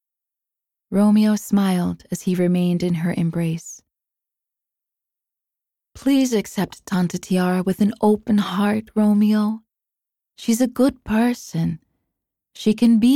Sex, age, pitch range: female, 20-39, 175-220 Hz